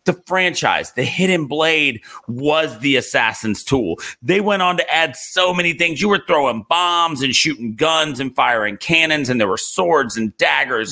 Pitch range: 125-170 Hz